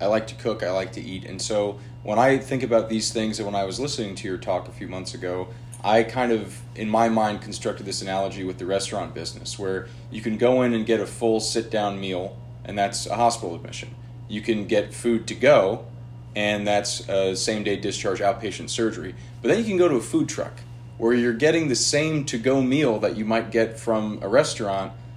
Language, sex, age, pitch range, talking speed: English, male, 30-49, 105-120 Hz, 225 wpm